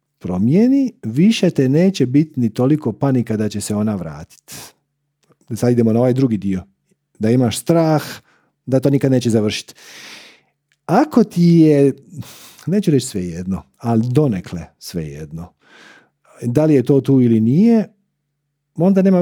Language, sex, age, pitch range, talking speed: Croatian, male, 50-69, 115-150 Hz, 145 wpm